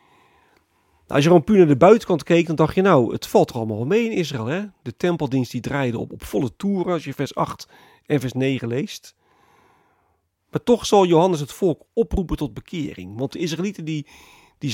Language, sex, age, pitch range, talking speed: Dutch, male, 40-59, 125-180 Hz, 200 wpm